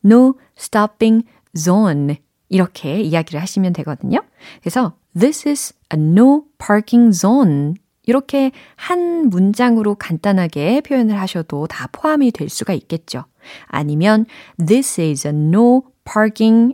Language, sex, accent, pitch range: Korean, female, native, 165-250 Hz